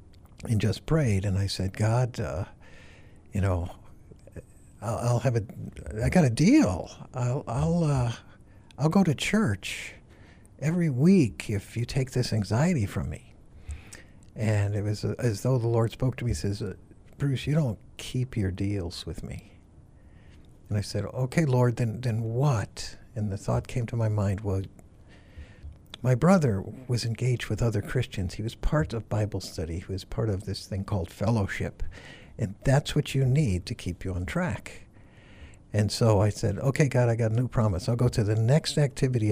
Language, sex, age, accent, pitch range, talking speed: English, male, 60-79, American, 95-125 Hz, 180 wpm